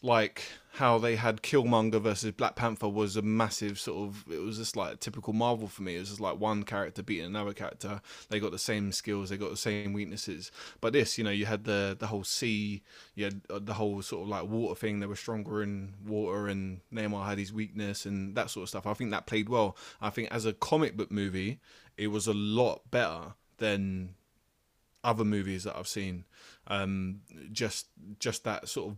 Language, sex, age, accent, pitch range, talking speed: English, male, 20-39, British, 100-115 Hz, 215 wpm